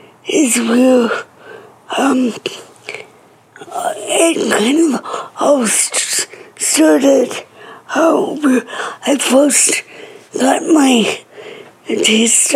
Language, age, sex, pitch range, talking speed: English, 60-79, female, 245-315 Hz, 70 wpm